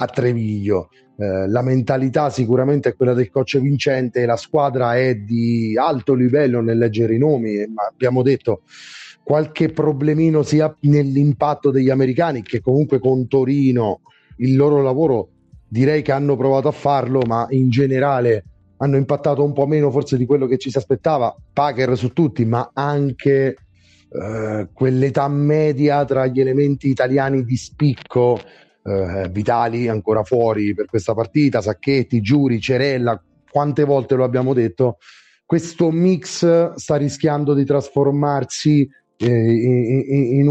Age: 30-49